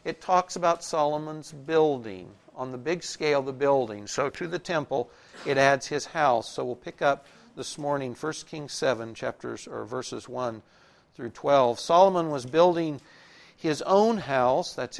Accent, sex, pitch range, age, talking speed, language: American, male, 125-160 Hz, 60-79, 170 wpm, English